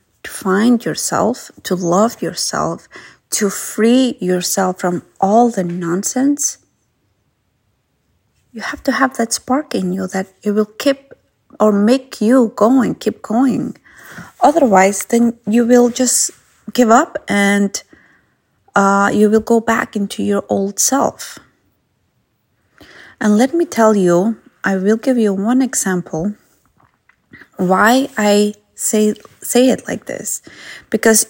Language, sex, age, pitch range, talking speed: English, female, 30-49, 195-240 Hz, 130 wpm